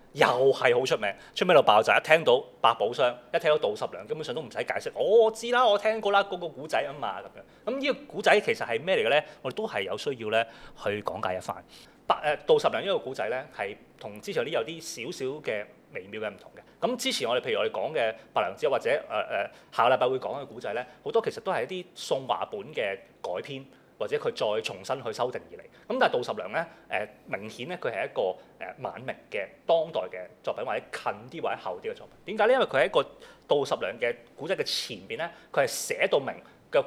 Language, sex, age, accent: Chinese, male, 30-49, native